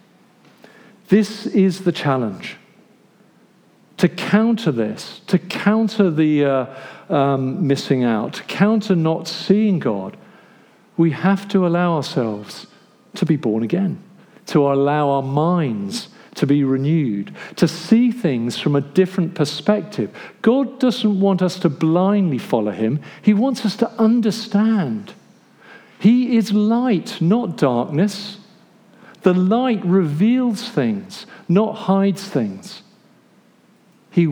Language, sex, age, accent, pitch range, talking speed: English, male, 50-69, British, 145-210 Hz, 120 wpm